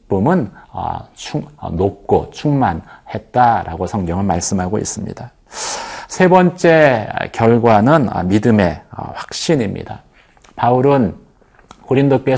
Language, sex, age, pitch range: Korean, male, 40-59, 105-140 Hz